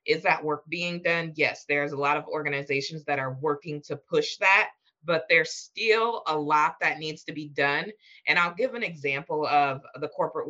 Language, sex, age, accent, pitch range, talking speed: English, female, 20-39, American, 150-215 Hz, 200 wpm